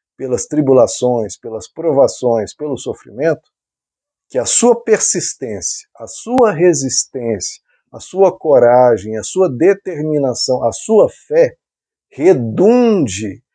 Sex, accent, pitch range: male, Brazilian, 130-180 Hz